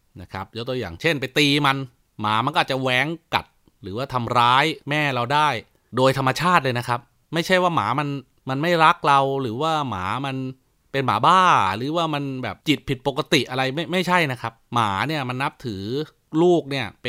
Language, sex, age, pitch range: Thai, male, 30-49, 120-145 Hz